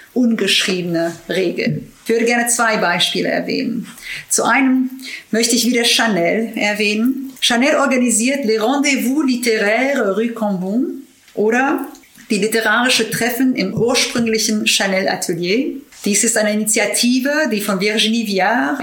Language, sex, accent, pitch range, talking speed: English, female, German, 200-245 Hz, 120 wpm